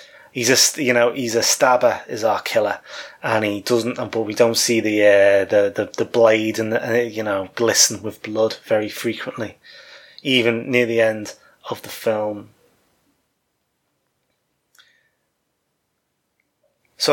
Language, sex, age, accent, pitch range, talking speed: English, male, 20-39, British, 105-115 Hz, 140 wpm